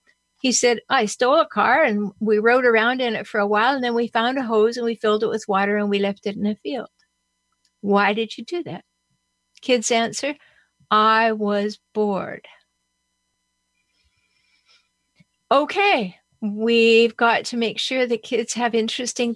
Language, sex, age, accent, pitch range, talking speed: English, female, 60-79, American, 210-250 Hz, 165 wpm